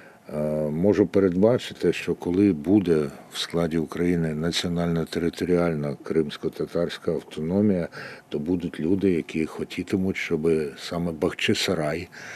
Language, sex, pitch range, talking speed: Ukrainian, male, 80-100 Hz, 90 wpm